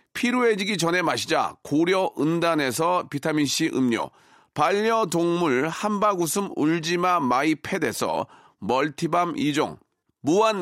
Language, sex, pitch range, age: Korean, male, 160-205 Hz, 40-59